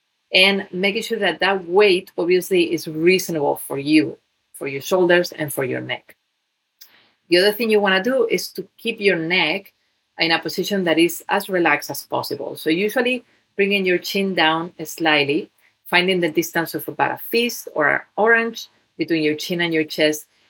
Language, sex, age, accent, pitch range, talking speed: English, female, 40-59, Spanish, 155-190 Hz, 180 wpm